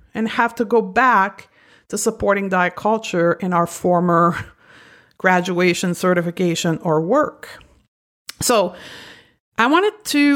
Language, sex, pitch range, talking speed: English, female, 185-235 Hz, 115 wpm